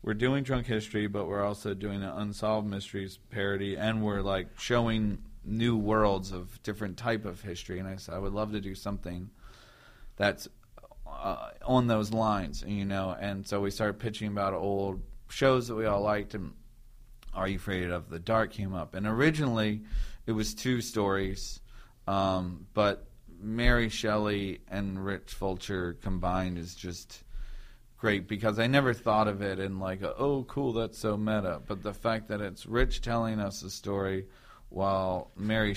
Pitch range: 95-115 Hz